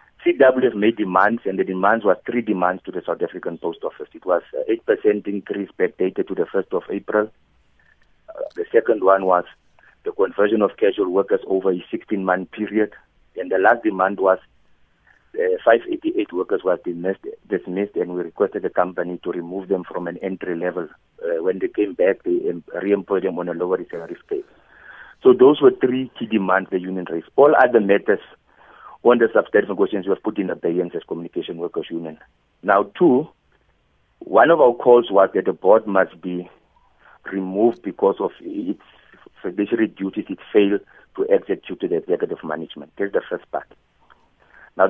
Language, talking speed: English, 175 wpm